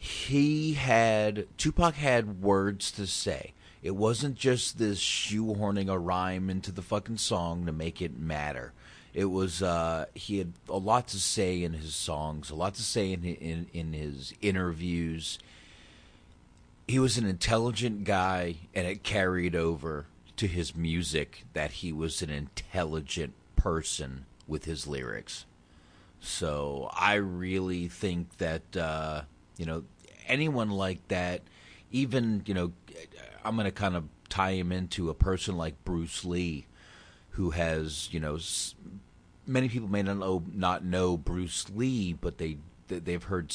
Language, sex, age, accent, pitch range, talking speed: English, male, 30-49, American, 80-100 Hz, 150 wpm